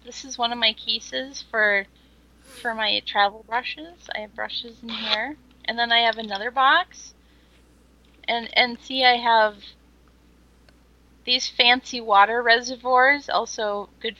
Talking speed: 140 wpm